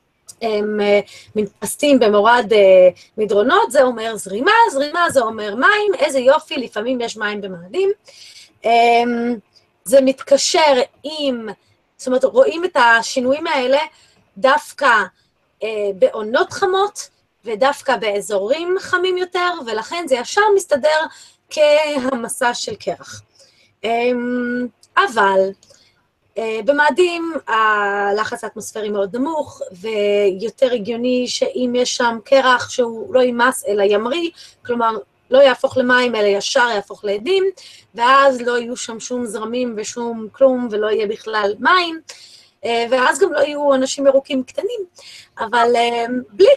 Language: Hebrew